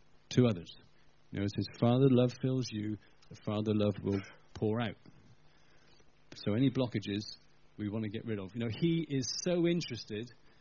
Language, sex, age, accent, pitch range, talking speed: English, male, 40-59, British, 105-130 Hz, 175 wpm